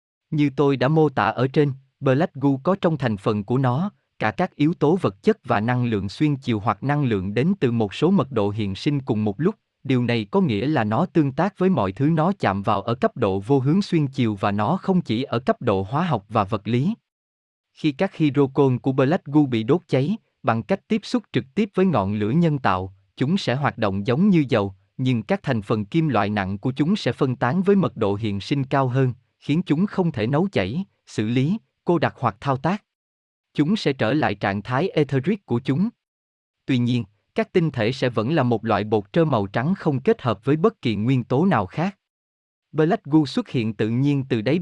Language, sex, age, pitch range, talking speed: Vietnamese, male, 20-39, 110-165 Hz, 235 wpm